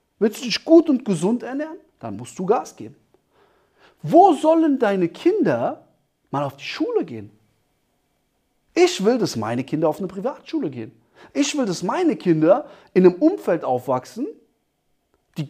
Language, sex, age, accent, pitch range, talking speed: German, male, 40-59, German, 155-250 Hz, 155 wpm